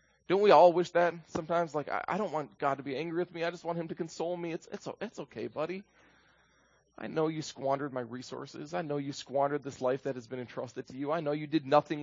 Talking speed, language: 255 wpm, Italian